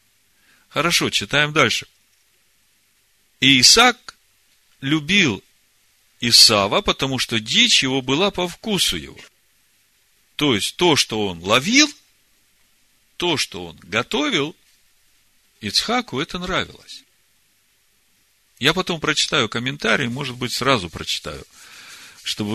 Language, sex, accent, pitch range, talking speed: Russian, male, native, 115-150 Hz, 95 wpm